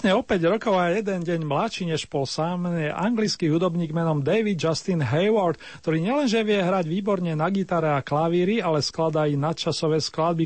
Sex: male